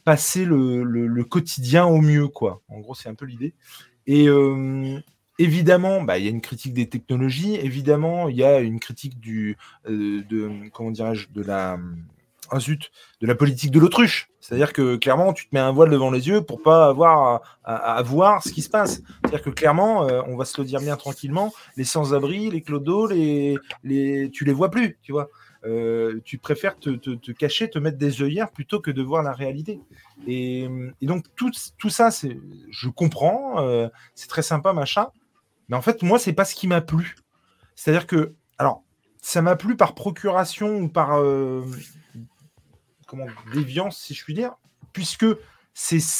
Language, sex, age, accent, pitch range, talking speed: French, male, 20-39, French, 130-175 Hz, 200 wpm